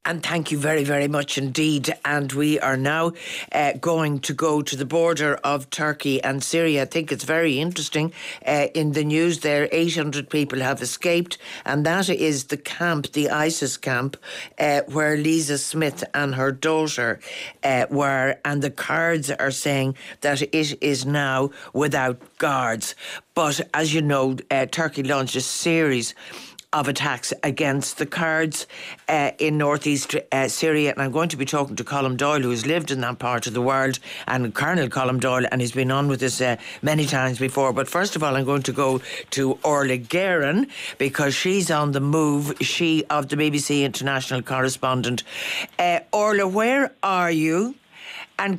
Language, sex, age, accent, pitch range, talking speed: English, female, 60-79, Irish, 135-160 Hz, 175 wpm